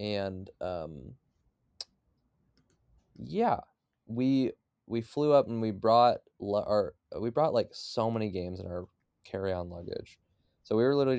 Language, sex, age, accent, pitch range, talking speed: English, male, 20-39, American, 95-120 Hz, 140 wpm